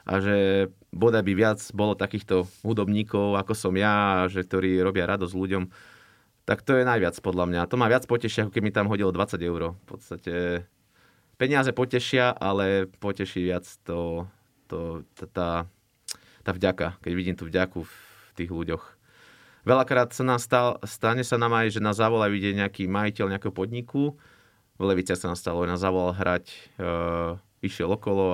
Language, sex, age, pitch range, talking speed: Slovak, male, 20-39, 90-115 Hz, 165 wpm